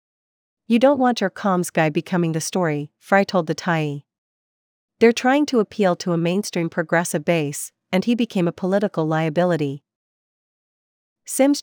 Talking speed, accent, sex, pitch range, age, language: 150 wpm, American, female, 165-200 Hz, 40-59, English